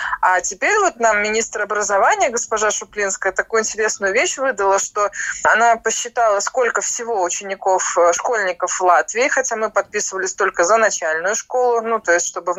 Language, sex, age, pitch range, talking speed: Russian, female, 20-39, 195-250 Hz, 155 wpm